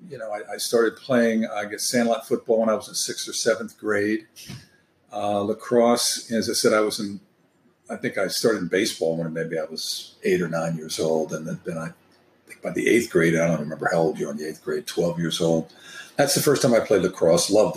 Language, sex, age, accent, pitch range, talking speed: English, male, 50-69, American, 100-125 Hz, 245 wpm